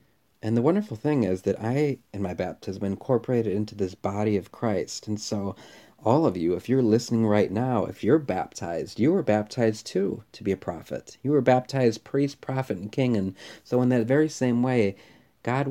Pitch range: 100-130 Hz